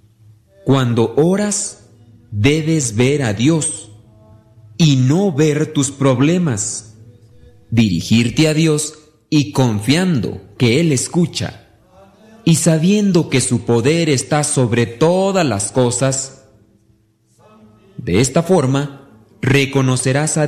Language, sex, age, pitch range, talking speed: Spanish, male, 40-59, 115-165 Hz, 100 wpm